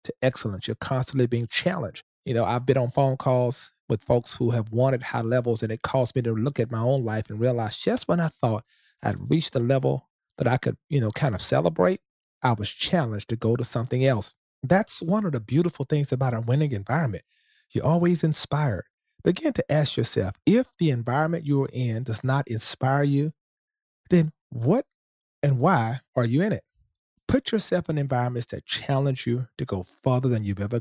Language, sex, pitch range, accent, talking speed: English, male, 115-160 Hz, American, 200 wpm